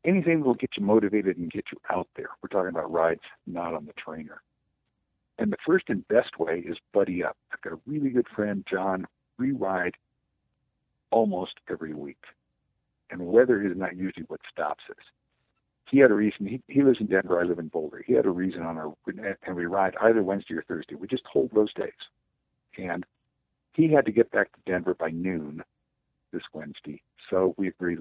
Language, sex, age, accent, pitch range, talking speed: English, male, 60-79, American, 90-130 Hz, 205 wpm